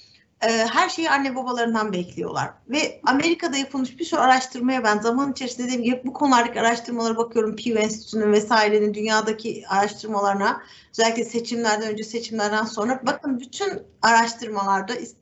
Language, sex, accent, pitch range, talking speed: Turkish, female, native, 205-275 Hz, 125 wpm